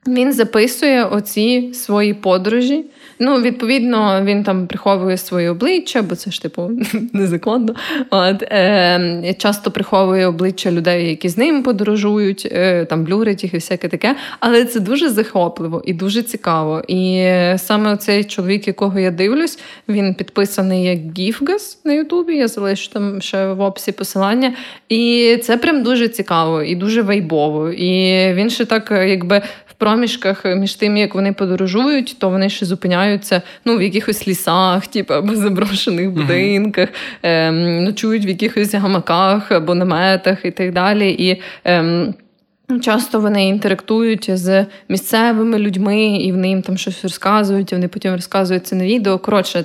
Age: 20-39